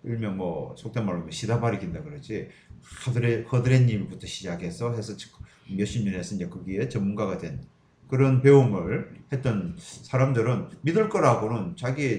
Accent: native